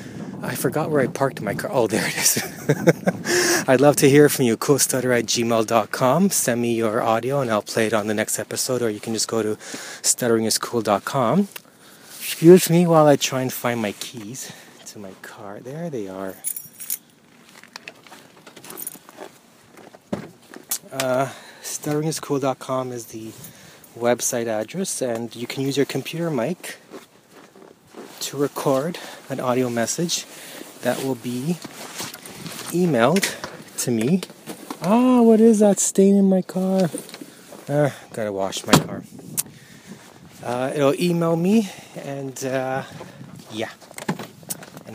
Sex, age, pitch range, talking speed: male, 30-49, 115-165 Hz, 135 wpm